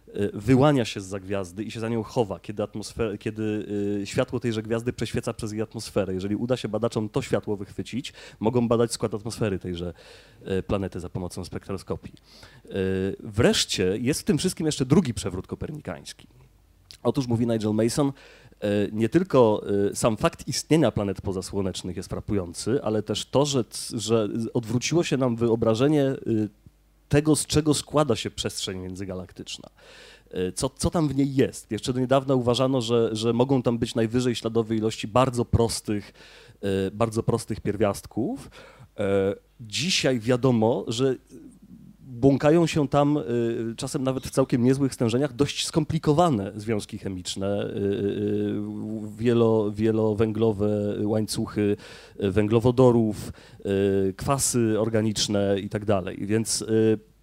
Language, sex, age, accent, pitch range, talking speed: Polish, male, 30-49, native, 105-130 Hz, 125 wpm